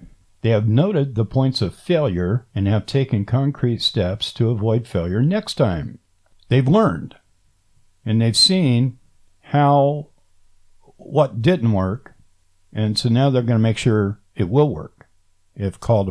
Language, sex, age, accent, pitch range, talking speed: English, male, 60-79, American, 95-135 Hz, 145 wpm